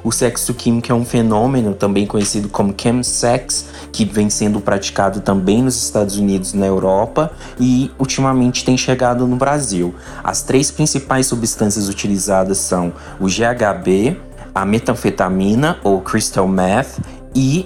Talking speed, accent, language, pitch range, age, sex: 140 wpm, Brazilian, Portuguese, 100-125 Hz, 20-39, male